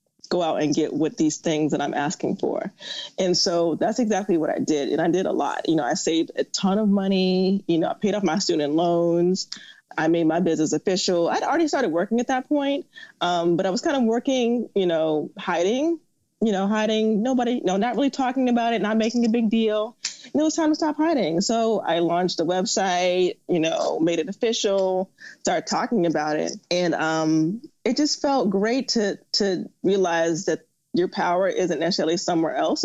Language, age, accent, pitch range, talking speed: English, 20-39, American, 165-230 Hz, 205 wpm